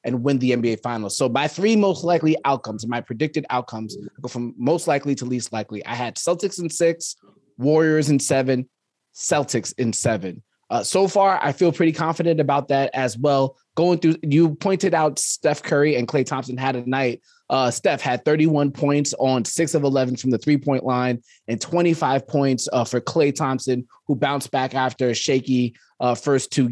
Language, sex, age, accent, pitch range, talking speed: English, male, 20-39, American, 125-155 Hz, 190 wpm